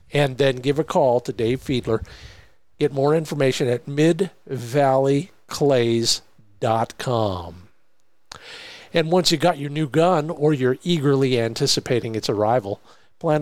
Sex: male